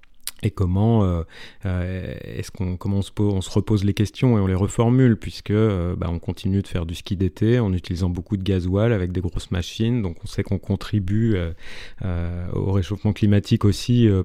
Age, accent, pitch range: 30-49, French, 90-105 Hz